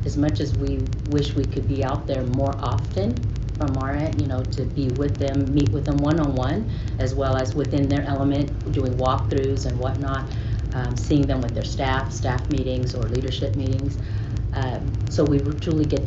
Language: English